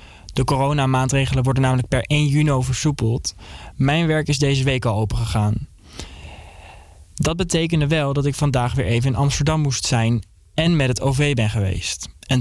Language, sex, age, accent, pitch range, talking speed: Dutch, male, 20-39, Dutch, 110-140 Hz, 165 wpm